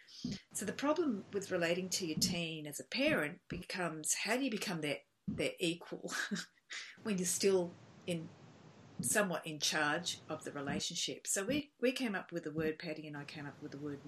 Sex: female